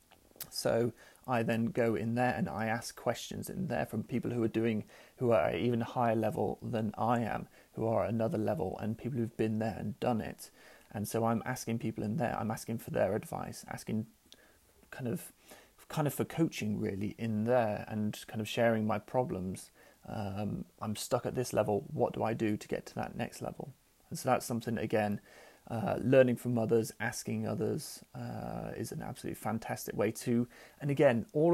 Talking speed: 195 wpm